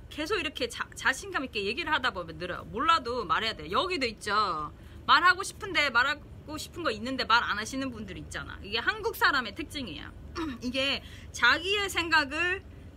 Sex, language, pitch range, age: female, Korean, 240-355 Hz, 20-39